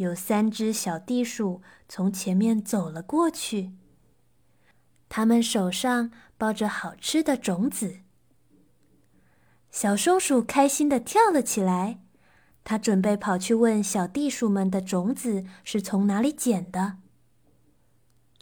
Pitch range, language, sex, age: 195-275 Hz, Chinese, female, 20-39